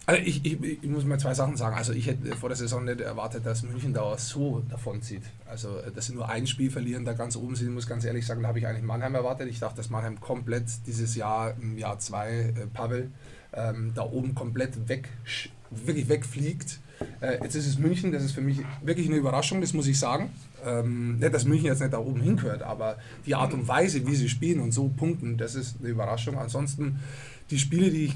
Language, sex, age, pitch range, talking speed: German, male, 20-39, 115-140 Hz, 230 wpm